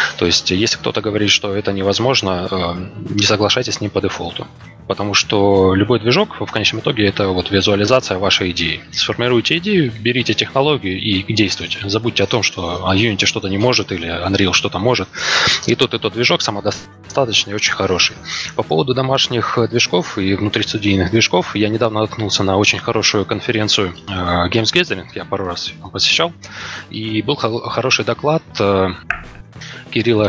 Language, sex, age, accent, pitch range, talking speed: Russian, male, 20-39, native, 95-115 Hz, 155 wpm